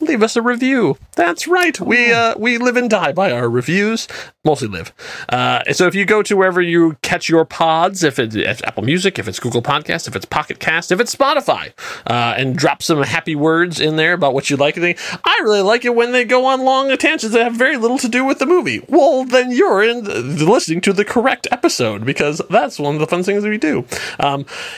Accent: American